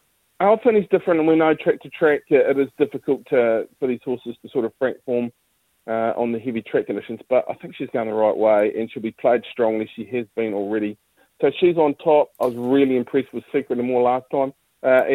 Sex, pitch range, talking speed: male, 115-140 Hz, 235 wpm